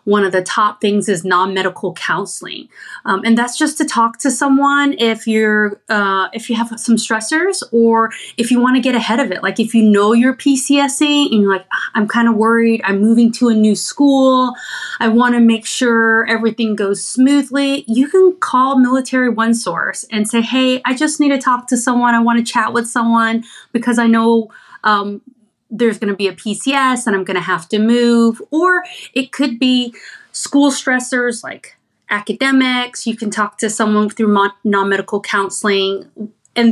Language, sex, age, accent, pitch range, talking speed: English, female, 30-49, American, 205-255 Hz, 185 wpm